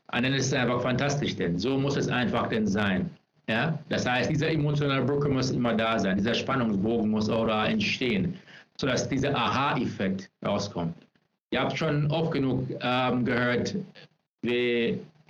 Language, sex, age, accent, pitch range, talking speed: German, male, 60-79, German, 130-170 Hz, 160 wpm